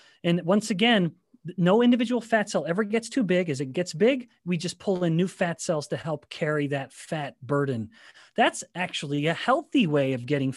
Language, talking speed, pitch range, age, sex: English, 200 wpm, 150-200 Hz, 30-49, male